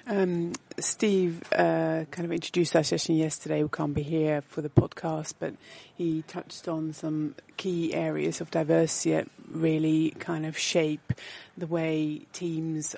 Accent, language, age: British, English, 30-49